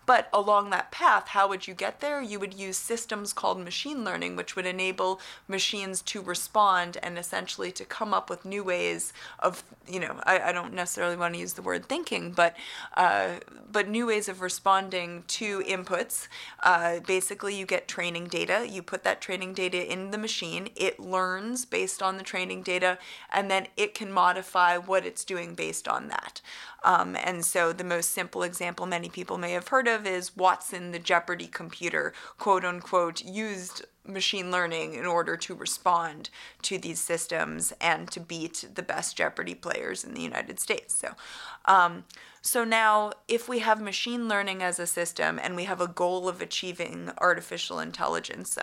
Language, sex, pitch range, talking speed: English, female, 175-210 Hz, 180 wpm